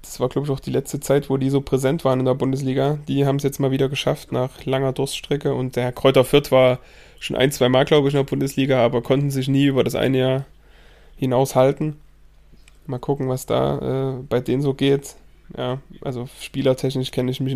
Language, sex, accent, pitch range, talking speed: German, male, German, 130-140 Hz, 220 wpm